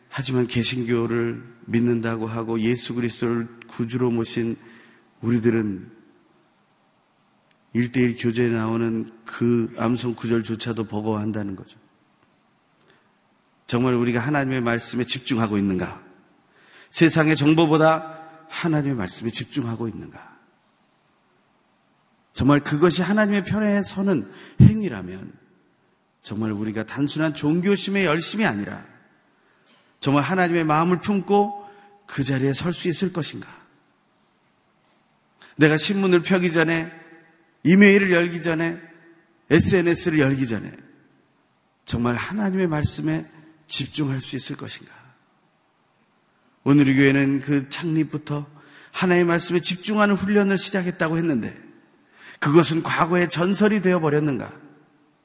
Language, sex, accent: Korean, male, native